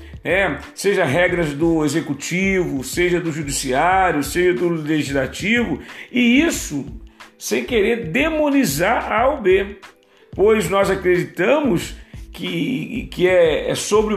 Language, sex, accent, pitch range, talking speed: Portuguese, male, Brazilian, 155-230 Hz, 115 wpm